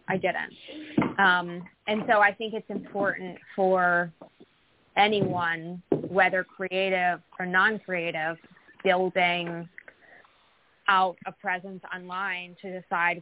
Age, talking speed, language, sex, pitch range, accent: 20-39, 100 wpm, English, female, 170-190 Hz, American